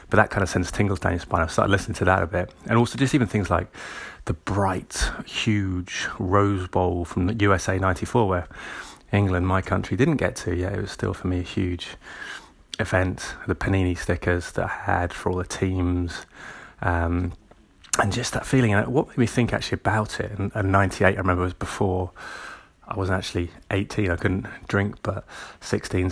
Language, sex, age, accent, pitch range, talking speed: English, male, 30-49, British, 90-105 Hz, 200 wpm